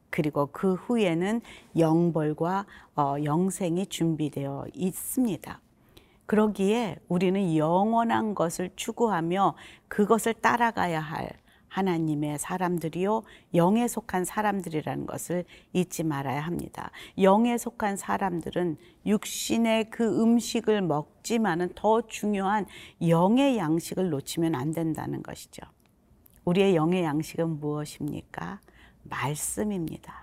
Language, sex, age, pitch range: Korean, female, 40-59, 160-215 Hz